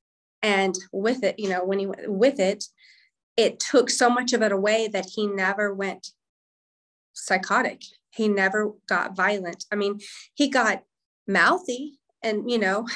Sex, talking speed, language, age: female, 155 wpm, English, 30-49